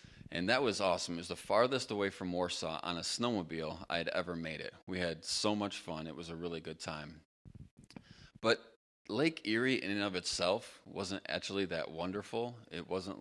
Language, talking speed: English, 195 wpm